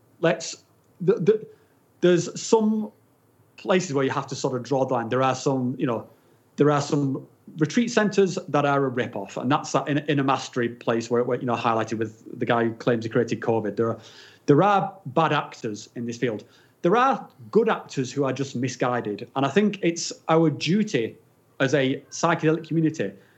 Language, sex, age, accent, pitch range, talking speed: English, male, 30-49, British, 125-165 Hz, 185 wpm